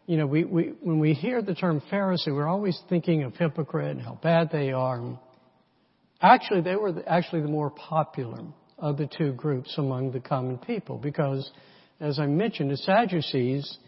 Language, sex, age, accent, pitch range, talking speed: English, male, 60-79, American, 145-180 Hz, 180 wpm